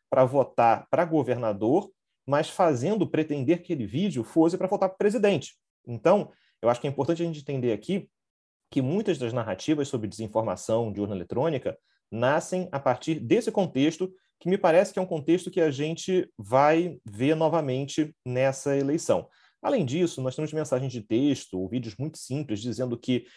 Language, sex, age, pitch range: Portuguese, male, 30-49, 120-175 Hz